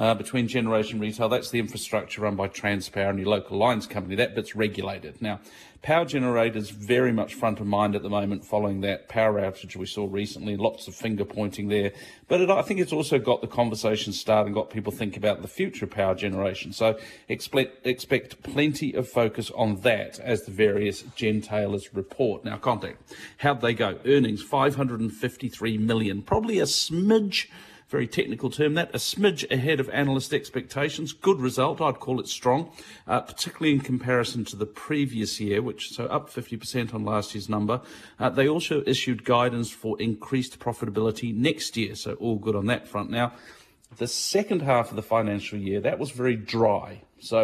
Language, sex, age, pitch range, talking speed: English, male, 40-59, 105-130 Hz, 190 wpm